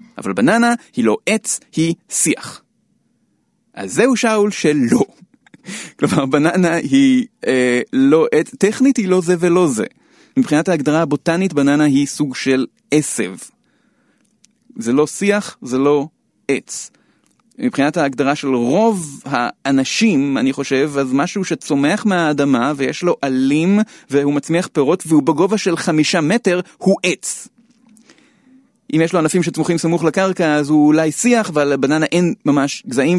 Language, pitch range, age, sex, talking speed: Hebrew, 140-225 Hz, 30-49, male, 140 wpm